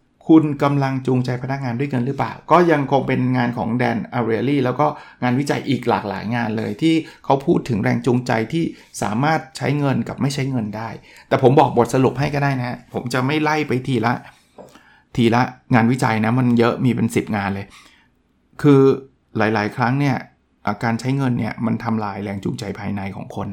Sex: male